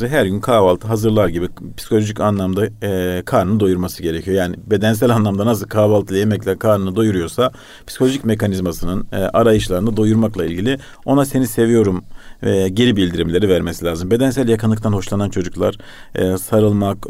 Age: 40-59